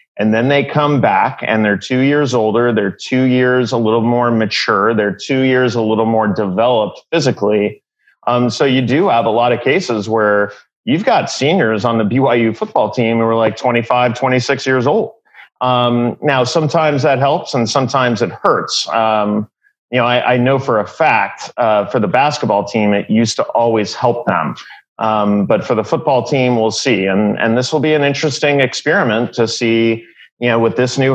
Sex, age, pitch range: male, 30-49, 110-130 Hz